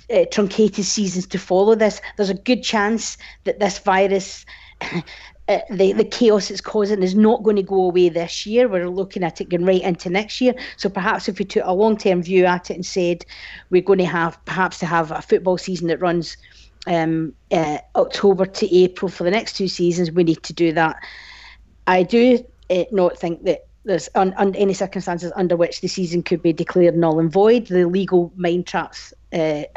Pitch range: 175-210 Hz